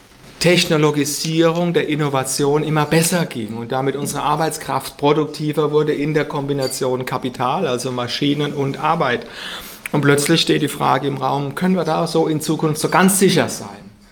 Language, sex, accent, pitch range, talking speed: German, male, German, 130-150 Hz, 155 wpm